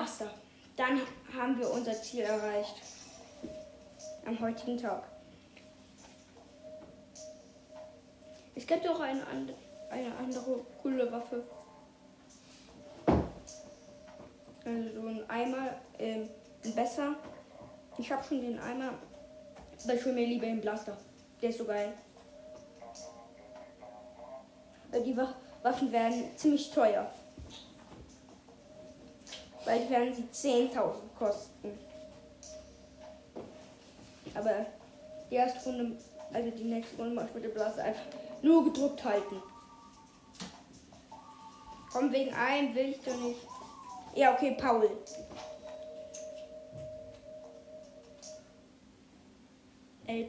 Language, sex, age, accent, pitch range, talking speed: German, female, 10-29, German, 230-300 Hz, 95 wpm